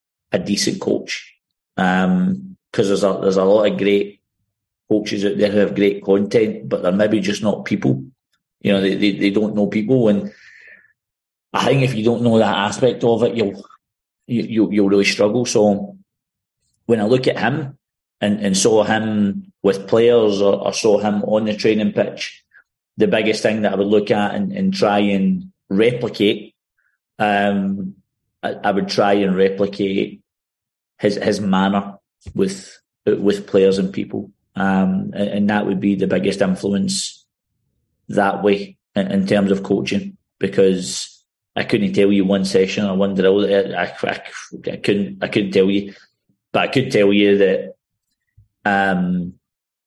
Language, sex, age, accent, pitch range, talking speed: English, male, 40-59, British, 95-105 Hz, 165 wpm